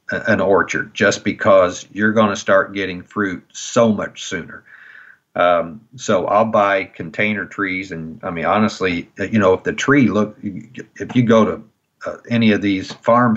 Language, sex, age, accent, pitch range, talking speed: English, male, 50-69, American, 100-115 Hz, 165 wpm